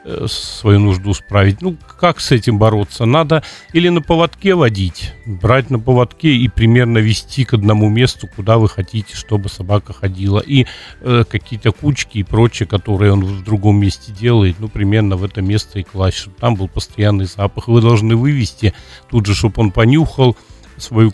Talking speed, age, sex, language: 175 wpm, 40-59, male, Russian